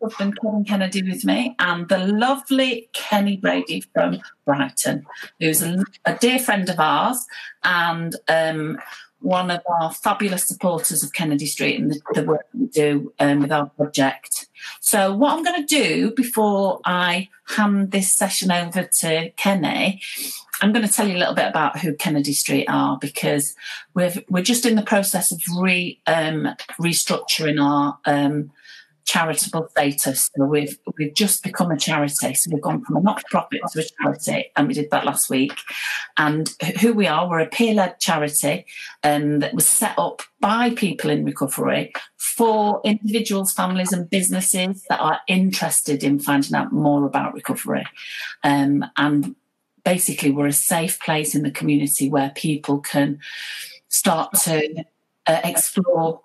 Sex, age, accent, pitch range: female, 40-59, British, 150-205 Hz